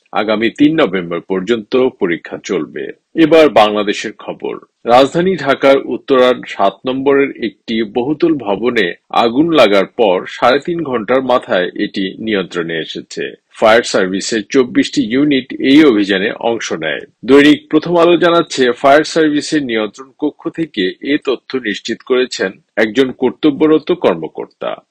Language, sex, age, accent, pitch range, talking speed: Bengali, male, 50-69, native, 115-155 Hz, 110 wpm